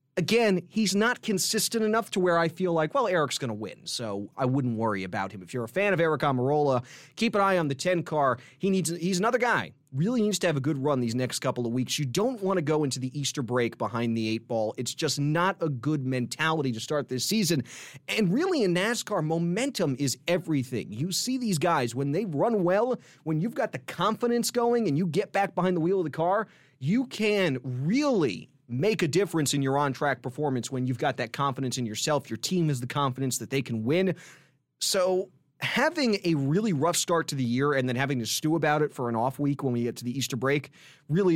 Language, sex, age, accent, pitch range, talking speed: English, male, 30-49, American, 130-190 Hz, 230 wpm